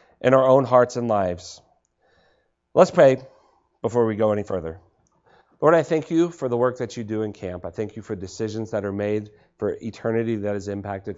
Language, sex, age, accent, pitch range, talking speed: English, male, 40-59, American, 95-120 Hz, 205 wpm